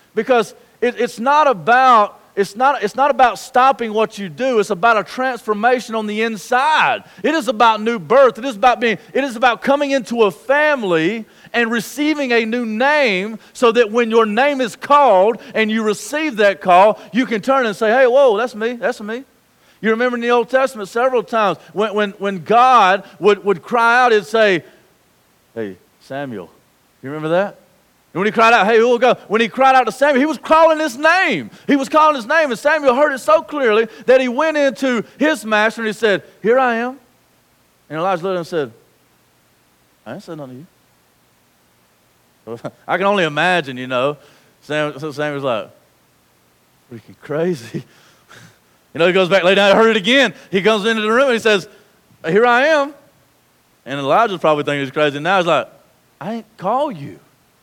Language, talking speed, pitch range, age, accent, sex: English, 200 wpm, 185-255 Hz, 40-59, American, male